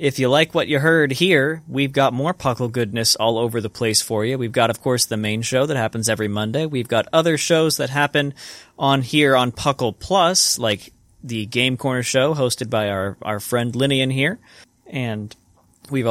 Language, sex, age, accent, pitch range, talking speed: English, male, 20-39, American, 110-140 Hz, 200 wpm